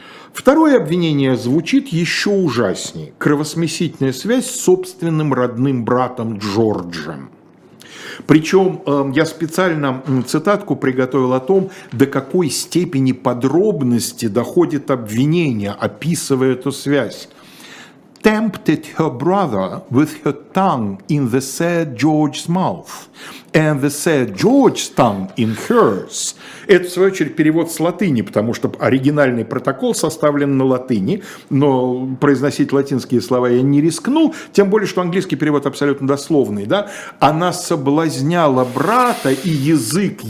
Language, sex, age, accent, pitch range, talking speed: Russian, male, 50-69, native, 130-170 Hz, 110 wpm